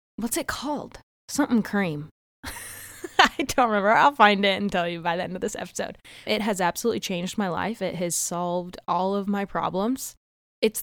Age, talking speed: 10-29, 190 wpm